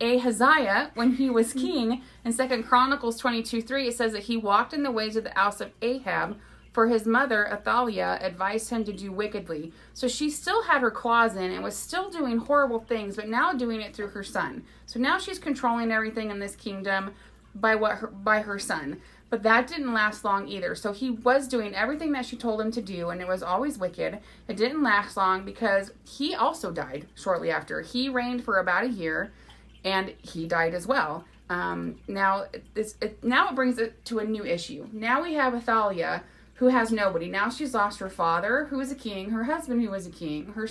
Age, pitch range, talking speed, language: 30-49, 200-250 Hz, 210 wpm, English